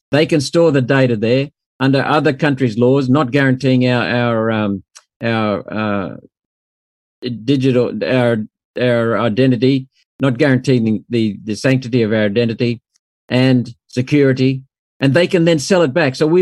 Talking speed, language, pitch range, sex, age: 145 wpm, English, 125-145 Hz, male, 50-69